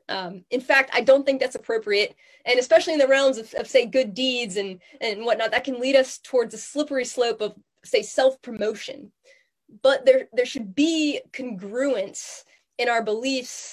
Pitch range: 225-300 Hz